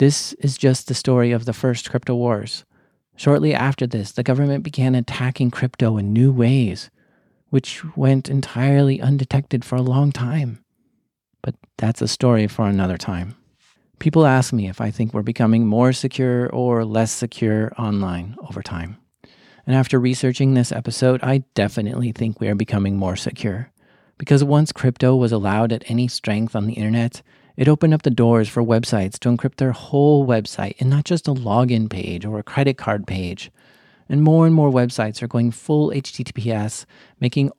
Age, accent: 40-59, American